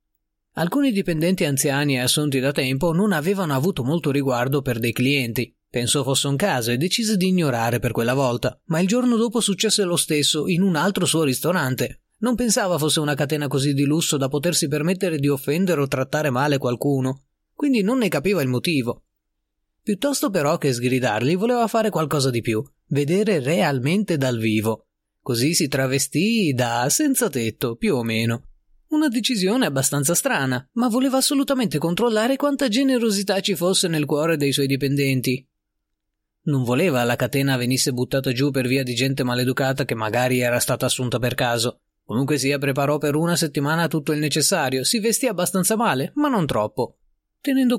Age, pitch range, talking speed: 30-49, 125-185 Hz, 170 wpm